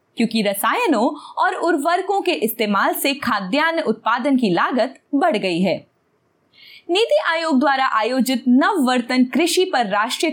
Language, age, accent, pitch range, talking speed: Hindi, 20-39, native, 225-335 Hz, 135 wpm